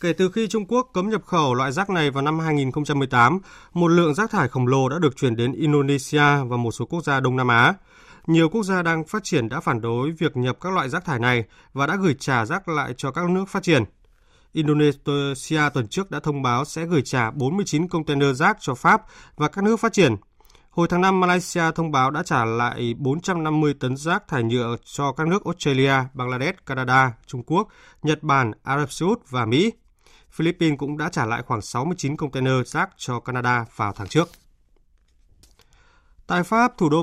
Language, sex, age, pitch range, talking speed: Vietnamese, male, 20-39, 130-170 Hz, 205 wpm